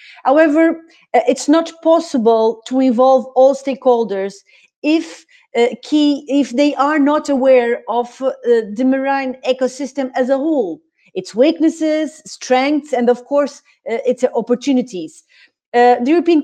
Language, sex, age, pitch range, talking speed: English, female, 30-49, 235-290 Hz, 135 wpm